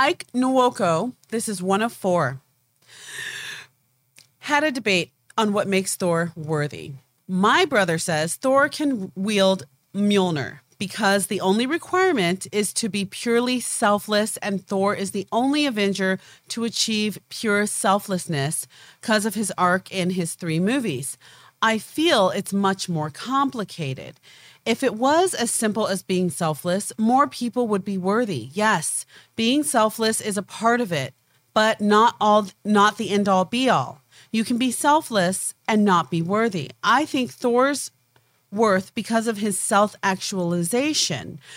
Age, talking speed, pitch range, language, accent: 30-49, 145 wpm, 180-230 Hz, English, American